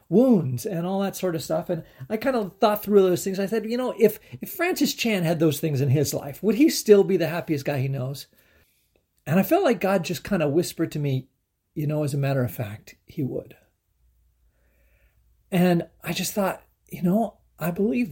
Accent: American